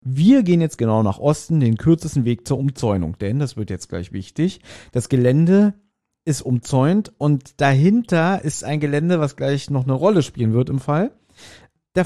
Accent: German